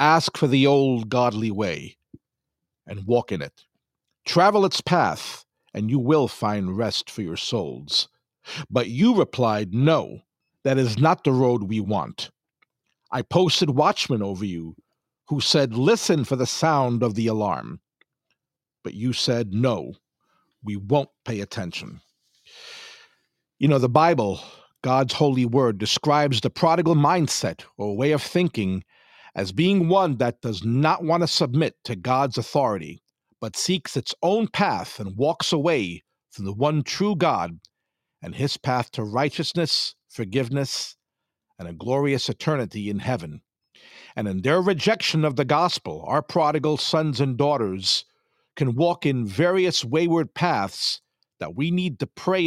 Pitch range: 120-165 Hz